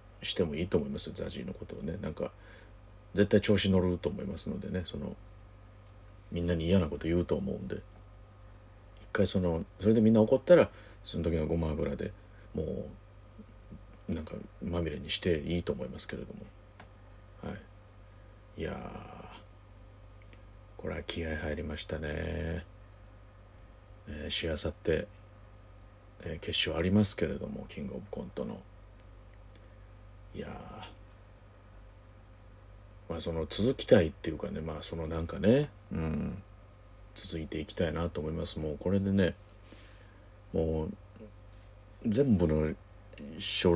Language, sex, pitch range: Japanese, male, 90-105 Hz